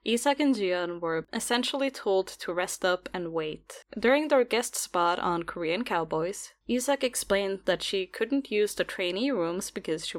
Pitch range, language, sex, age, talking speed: 170-230 Hz, English, female, 10-29, 170 wpm